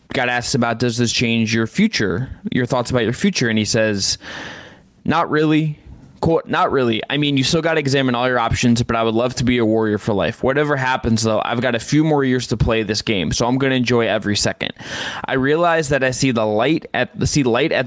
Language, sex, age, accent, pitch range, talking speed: English, male, 20-39, American, 115-150 Hz, 250 wpm